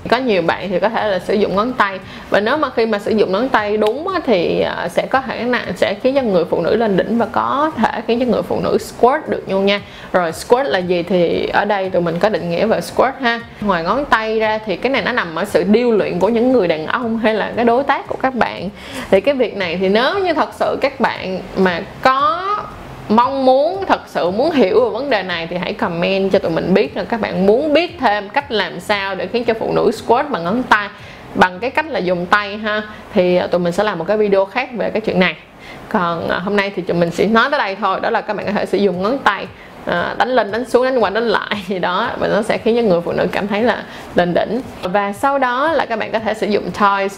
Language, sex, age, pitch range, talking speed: Vietnamese, female, 20-39, 195-250 Hz, 265 wpm